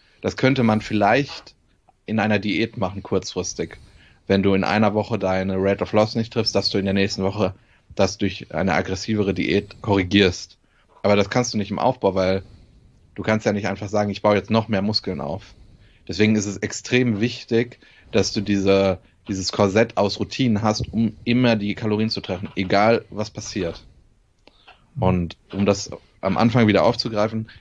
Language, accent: German, German